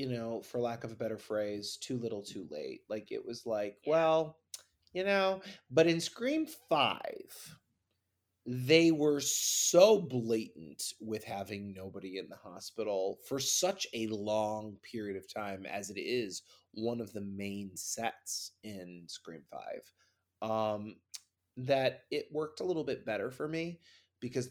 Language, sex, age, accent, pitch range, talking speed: English, male, 30-49, American, 100-125 Hz, 150 wpm